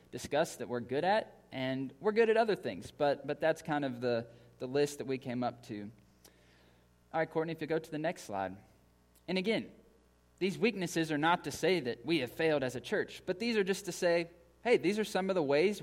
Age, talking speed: 20-39, 235 wpm